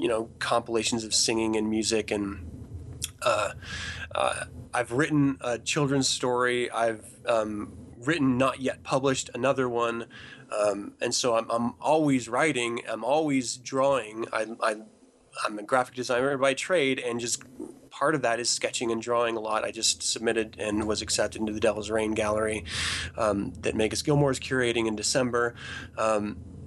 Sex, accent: male, American